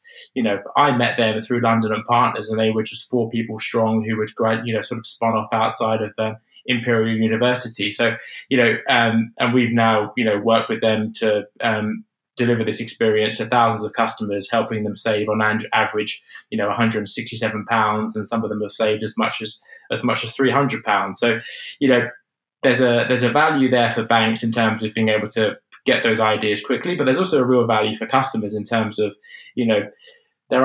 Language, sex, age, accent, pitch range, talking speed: English, male, 20-39, British, 110-120 Hz, 215 wpm